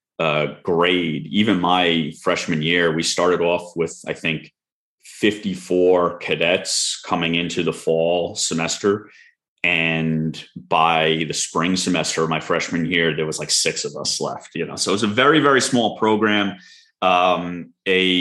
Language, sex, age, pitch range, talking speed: English, male, 30-49, 85-95 Hz, 160 wpm